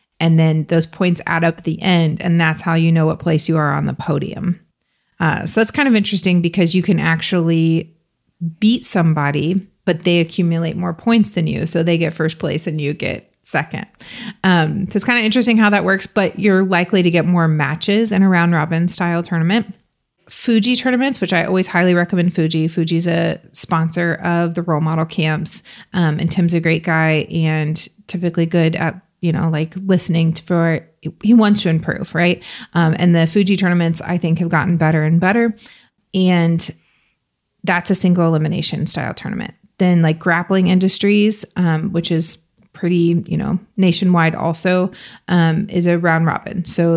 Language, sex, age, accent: English, female, 30-49, American